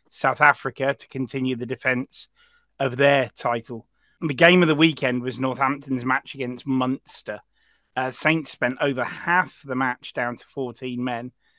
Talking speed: 155 wpm